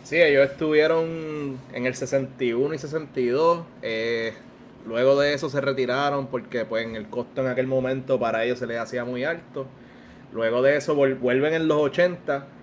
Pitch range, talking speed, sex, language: 115-135 Hz, 175 wpm, male, Spanish